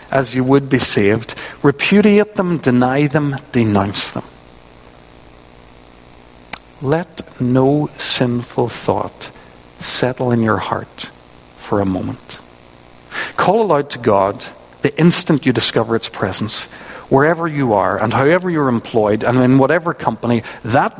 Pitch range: 95-150 Hz